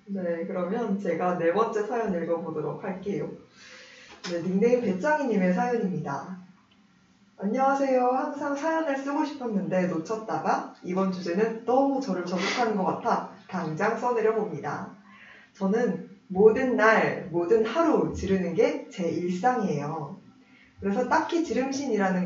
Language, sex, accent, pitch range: Korean, female, native, 190-255 Hz